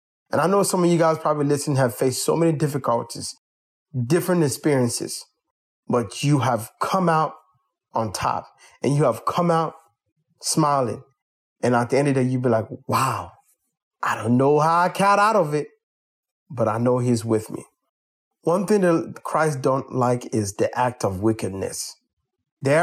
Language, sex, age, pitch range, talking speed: English, male, 30-49, 120-165 Hz, 175 wpm